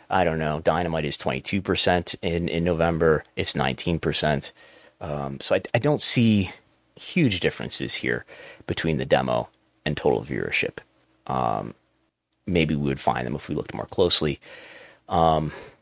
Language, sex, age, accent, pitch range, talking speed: English, male, 30-49, American, 80-115 Hz, 145 wpm